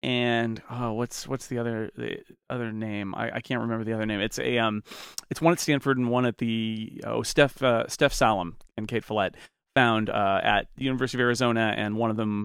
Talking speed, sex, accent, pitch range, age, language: 220 wpm, male, American, 110-145 Hz, 30-49, English